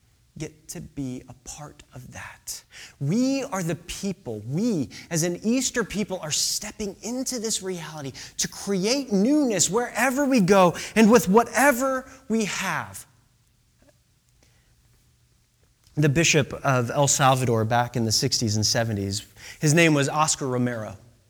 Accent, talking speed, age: American, 135 wpm, 30-49